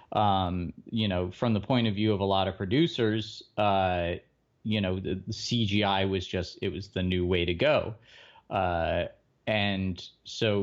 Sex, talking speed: male, 175 wpm